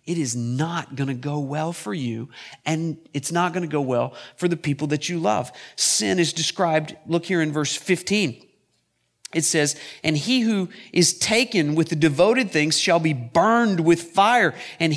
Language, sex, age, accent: English, male, 40-59, American